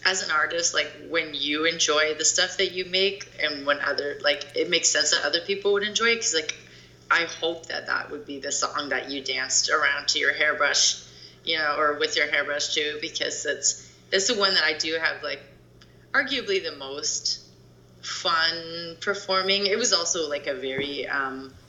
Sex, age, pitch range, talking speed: female, 30-49, 140-160 Hz, 195 wpm